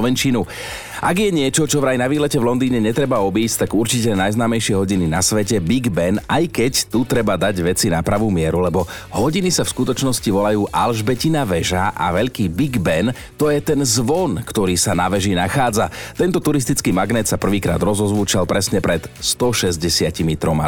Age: 40-59